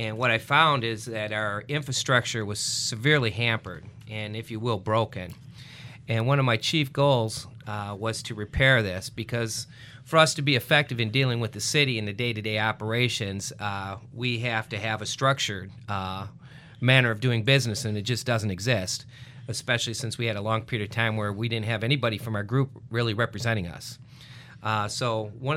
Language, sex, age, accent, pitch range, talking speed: English, male, 40-59, American, 110-130 Hz, 190 wpm